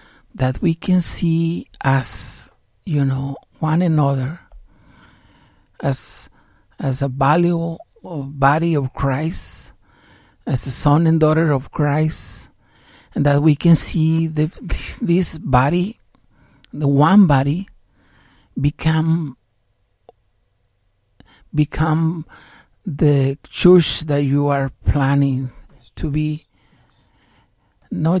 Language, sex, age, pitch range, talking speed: English, male, 60-79, 130-155 Hz, 95 wpm